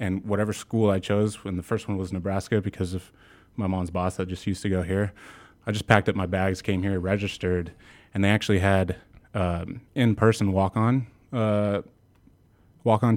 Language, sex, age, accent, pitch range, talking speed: English, male, 20-39, American, 95-105 Hz, 180 wpm